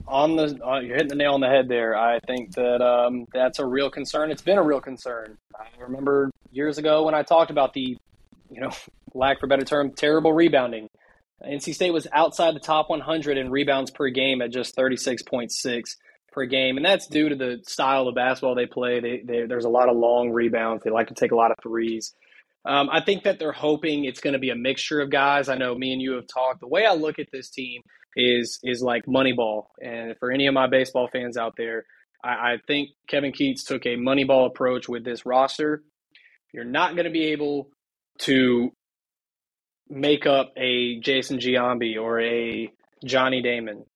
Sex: male